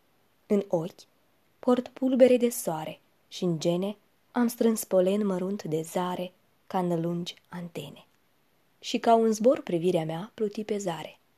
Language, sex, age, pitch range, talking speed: Romanian, female, 20-39, 175-225 Hz, 150 wpm